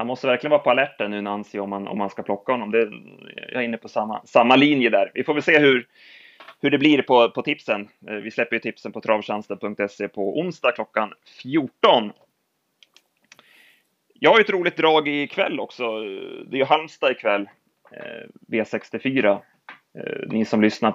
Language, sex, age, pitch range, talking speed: Swedish, male, 30-49, 110-130 Hz, 190 wpm